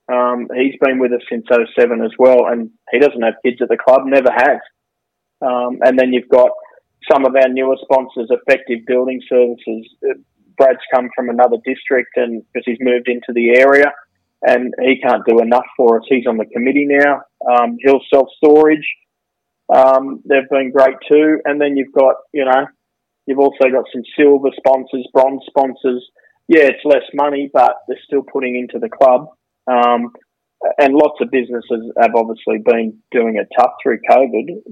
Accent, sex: Australian, male